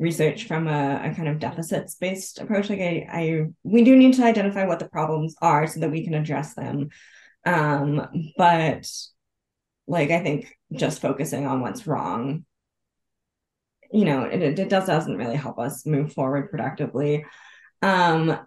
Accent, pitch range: American, 150-180 Hz